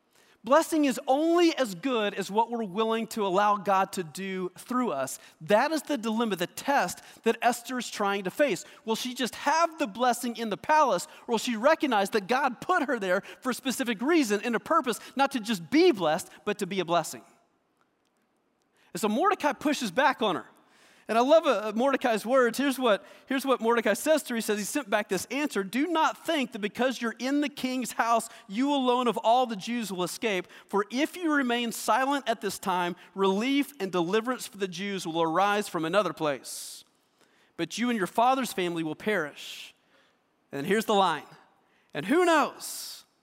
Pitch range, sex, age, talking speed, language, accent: 195-260 Hz, male, 40-59, 195 wpm, English, American